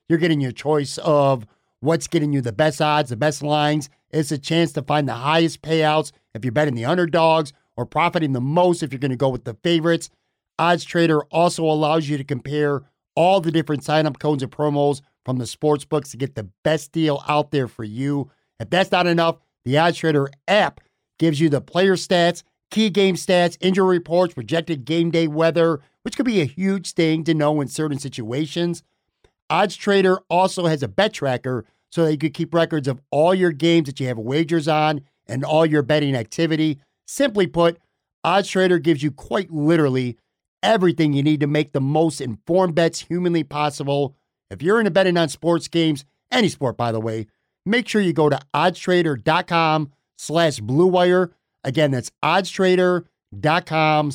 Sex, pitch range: male, 145-170 Hz